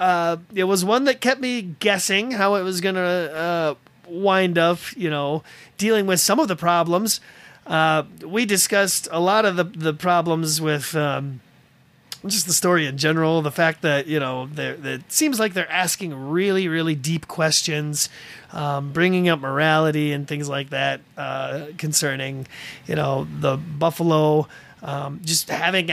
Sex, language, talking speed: male, English, 160 wpm